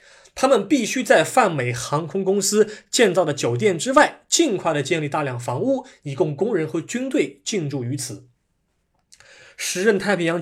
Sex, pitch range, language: male, 140-200 Hz, Chinese